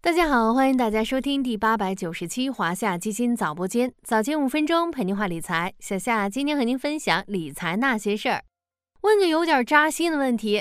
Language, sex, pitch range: Chinese, female, 210-300 Hz